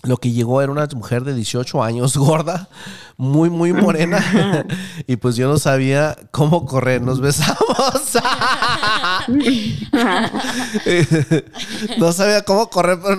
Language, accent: English, Mexican